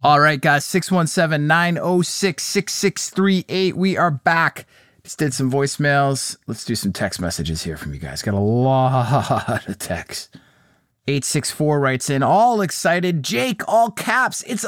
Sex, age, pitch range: male, 30-49, 140-210 Hz